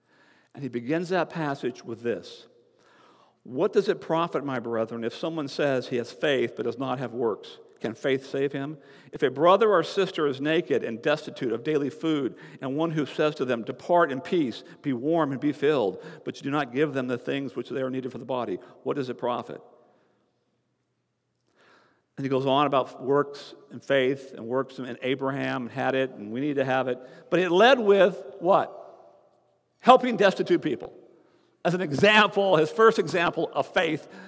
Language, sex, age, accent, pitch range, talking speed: English, male, 50-69, American, 135-225 Hz, 190 wpm